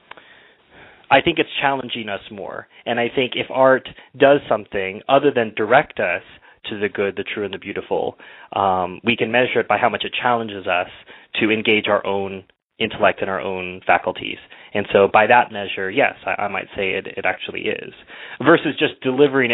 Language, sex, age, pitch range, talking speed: English, male, 20-39, 105-125 Hz, 190 wpm